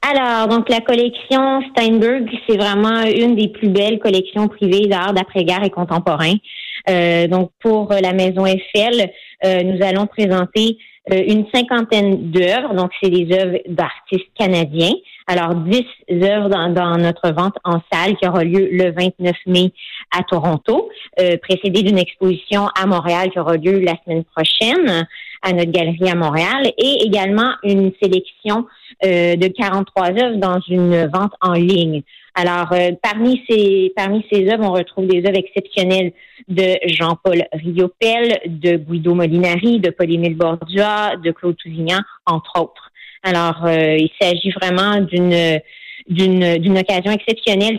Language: French